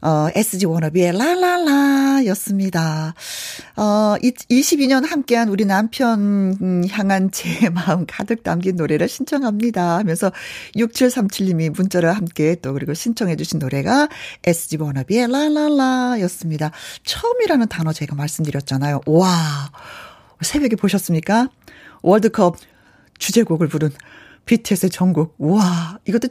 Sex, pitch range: female, 165-250 Hz